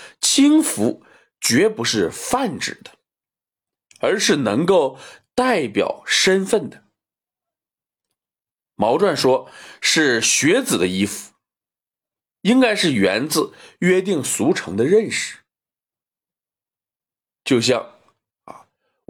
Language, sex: Chinese, male